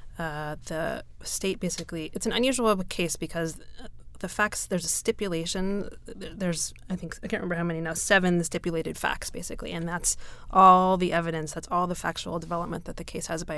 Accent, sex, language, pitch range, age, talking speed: American, female, English, 165-190 Hz, 20-39, 185 wpm